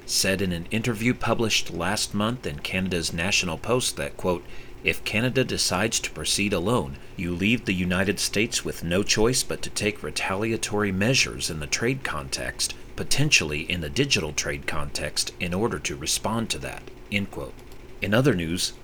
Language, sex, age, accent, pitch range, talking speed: English, male, 40-59, American, 90-120 Hz, 170 wpm